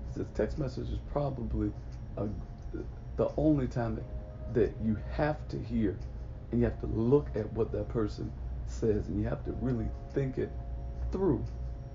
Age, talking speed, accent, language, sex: 40-59, 165 wpm, American, English, male